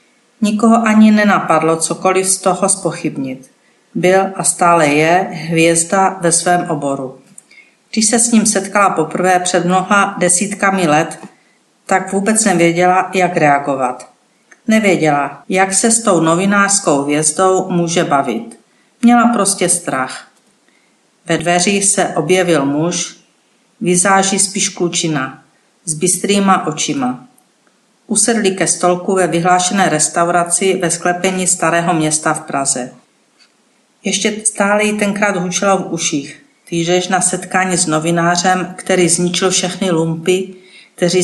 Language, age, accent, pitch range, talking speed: Czech, 50-69, native, 170-200 Hz, 120 wpm